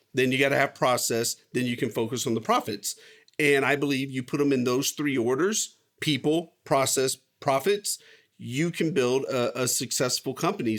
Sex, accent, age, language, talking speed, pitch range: male, American, 40-59, English, 185 wpm, 140-220 Hz